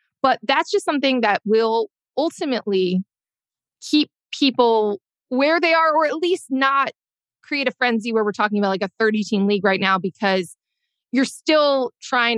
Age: 20-39